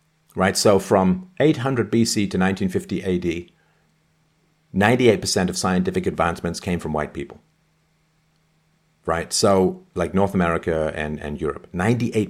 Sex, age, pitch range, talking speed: male, 50-69, 90-115 Hz, 135 wpm